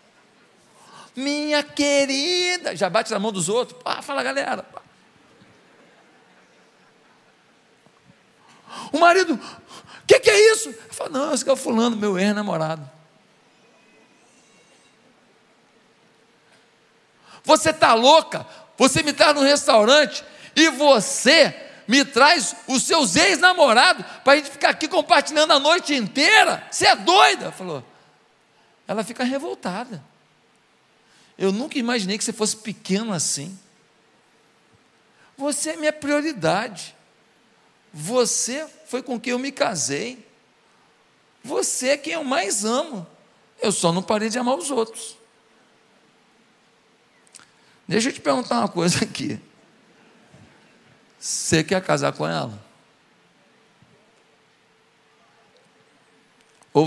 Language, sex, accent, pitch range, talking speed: Portuguese, male, Brazilian, 215-300 Hz, 105 wpm